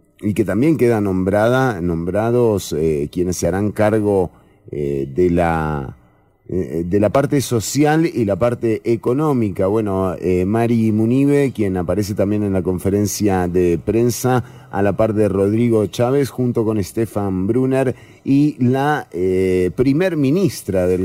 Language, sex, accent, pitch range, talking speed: English, male, Argentinian, 100-130 Hz, 145 wpm